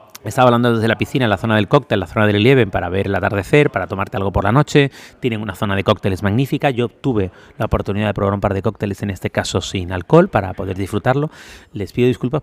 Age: 30-49